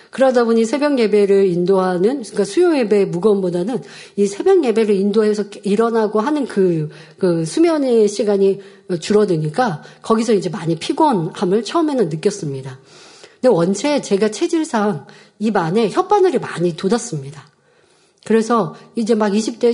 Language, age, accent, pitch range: Korean, 40-59, native, 180-250 Hz